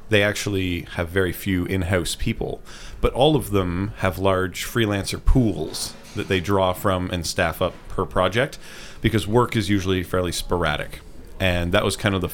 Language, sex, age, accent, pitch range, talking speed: Ukrainian, male, 30-49, American, 80-100 Hz, 175 wpm